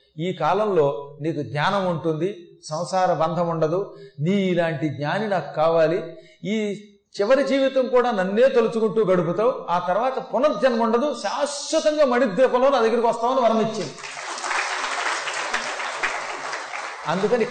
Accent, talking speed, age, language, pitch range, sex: native, 110 wpm, 30-49, Telugu, 145-220 Hz, male